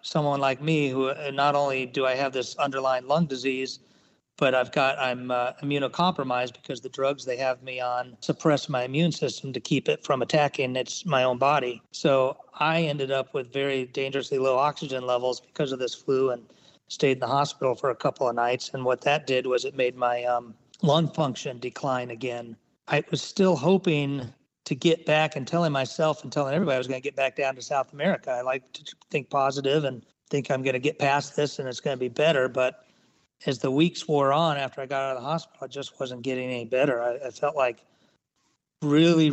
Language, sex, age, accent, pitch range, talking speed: English, male, 40-59, American, 130-145 Hz, 215 wpm